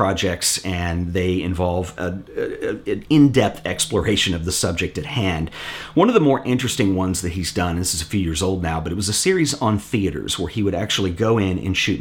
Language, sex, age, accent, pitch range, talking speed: English, male, 40-59, American, 90-115 Hz, 230 wpm